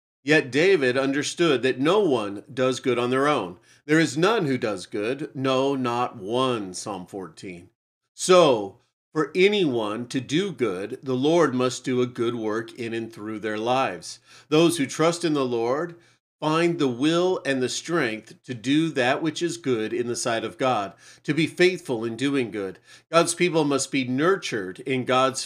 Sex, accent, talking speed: male, American, 180 wpm